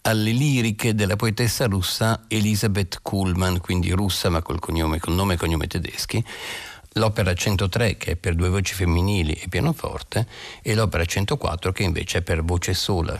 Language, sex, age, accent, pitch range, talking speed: Italian, male, 50-69, native, 90-110 Hz, 165 wpm